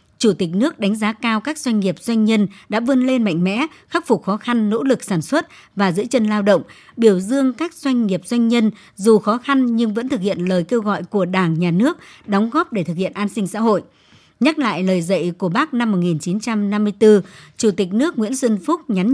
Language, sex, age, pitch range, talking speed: Vietnamese, male, 60-79, 190-245 Hz, 230 wpm